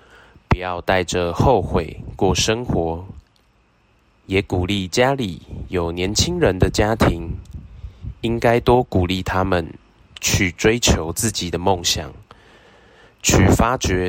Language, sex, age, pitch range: Chinese, male, 20-39, 90-105 Hz